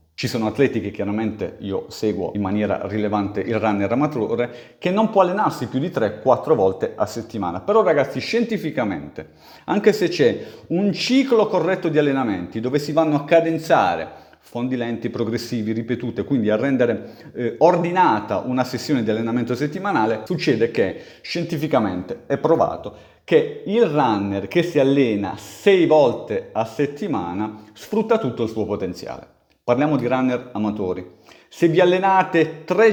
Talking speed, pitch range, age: 150 wpm, 110-180 Hz, 40-59